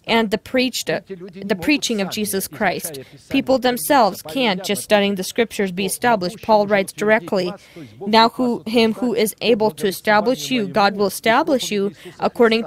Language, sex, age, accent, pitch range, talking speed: English, female, 20-39, American, 195-235 Hz, 165 wpm